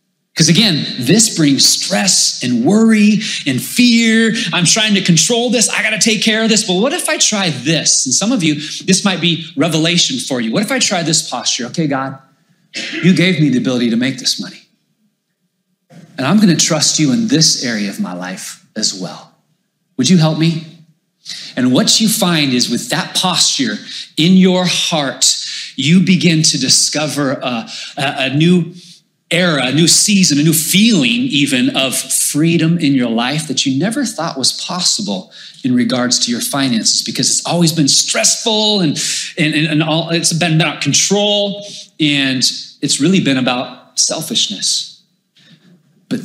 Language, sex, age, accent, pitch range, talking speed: English, male, 30-49, American, 155-205 Hz, 175 wpm